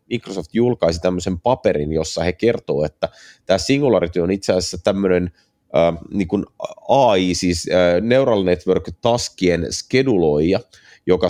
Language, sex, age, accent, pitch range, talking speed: Finnish, male, 30-49, native, 85-105 Hz, 125 wpm